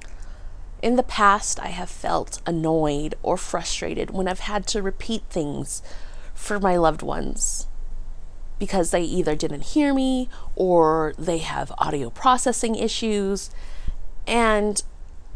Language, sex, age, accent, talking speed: English, female, 30-49, American, 125 wpm